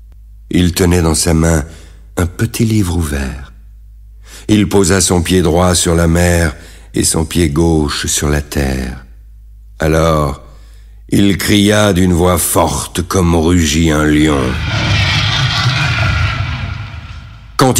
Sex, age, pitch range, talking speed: male, 60-79, 80-105 Hz, 120 wpm